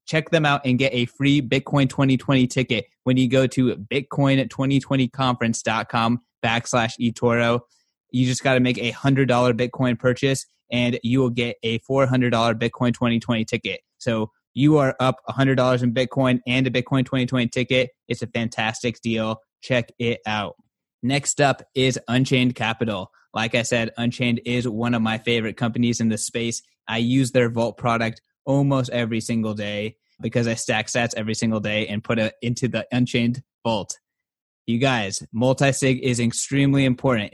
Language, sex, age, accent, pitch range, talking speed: English, male, 20-39, American, 115-130 Hz, 160 wpm